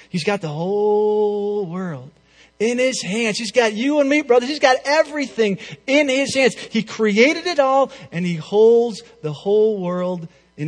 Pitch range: 155-215 Hz